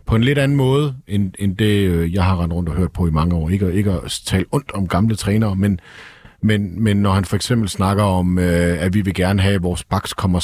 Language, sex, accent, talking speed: Danish, male, native, 255 wpm